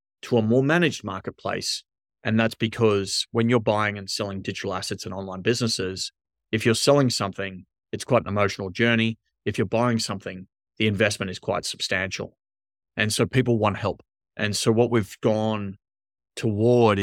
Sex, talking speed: male, 165 wpm